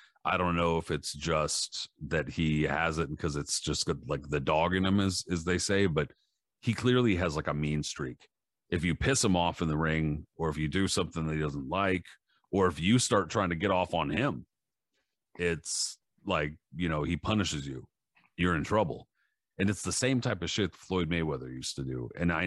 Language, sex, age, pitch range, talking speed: English, male, 40-59, 75-95 Hz, 215 wpm